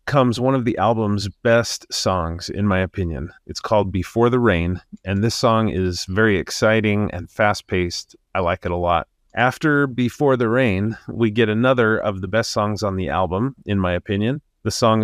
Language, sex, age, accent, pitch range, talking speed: English, male, 30-49, American, 95-120 Hz, 185 wpm